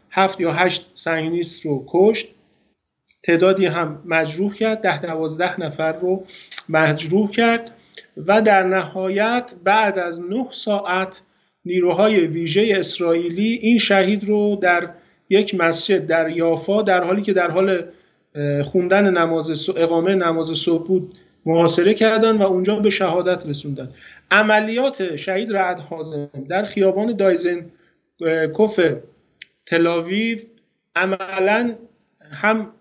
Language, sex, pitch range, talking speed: Persian, male, 165-200 Hz, 115 wpm